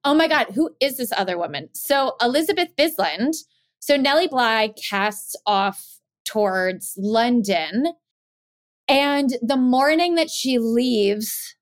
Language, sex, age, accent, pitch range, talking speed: English, female, 20-39, American, 200-265 Hz, 125 wpm